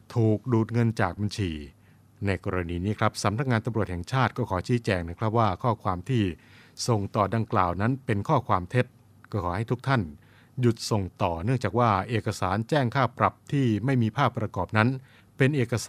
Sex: male